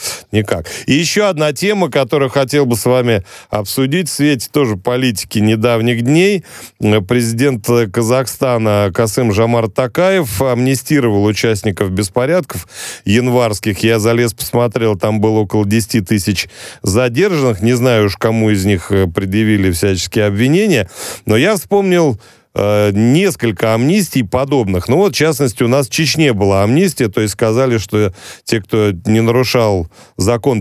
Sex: male